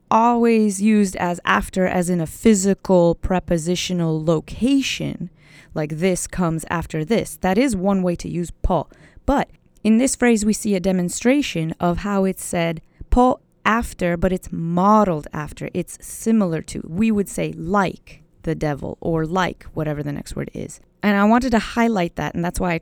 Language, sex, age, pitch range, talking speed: English, female, 20-39, 160-205 Hz, 175 wpm